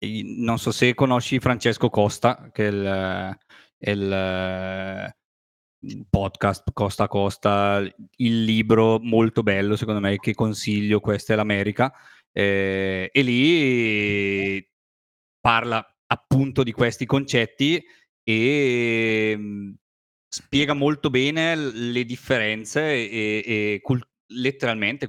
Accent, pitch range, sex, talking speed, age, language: native, 100-125 Hz, male, 105 wpm, 30-49, Italian